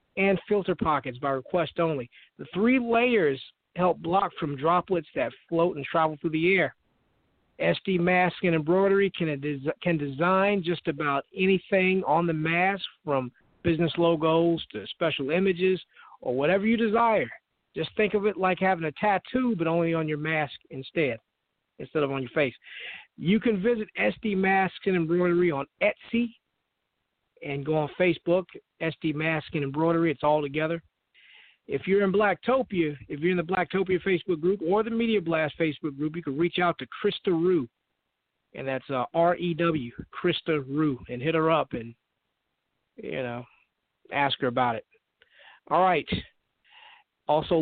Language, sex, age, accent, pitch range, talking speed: English, male, 50-69, American, 155-190 Hz, 160 wpm